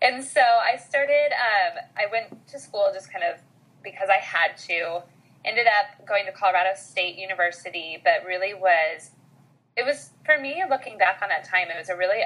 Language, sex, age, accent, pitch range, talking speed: English, female, 20-39, American, 175-255 Hz, 190 wpm